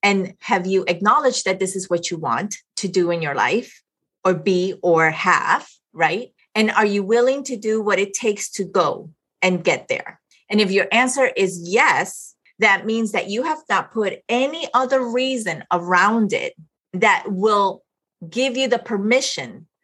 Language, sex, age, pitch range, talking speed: English, female, 30-49, 185-240 Hz, 175 wpm